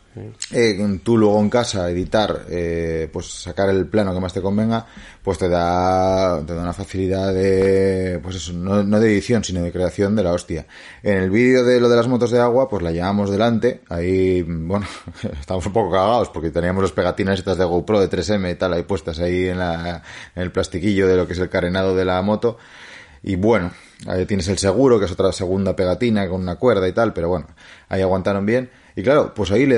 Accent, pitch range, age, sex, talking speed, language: Spanish, 90-115 Hz, 30-49, male, 220 wpm, Spanish